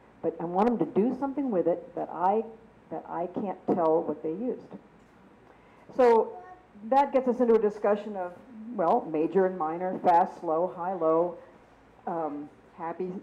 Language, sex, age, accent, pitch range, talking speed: English, female, 60-79, American, 180-245 Hz, 165 wpm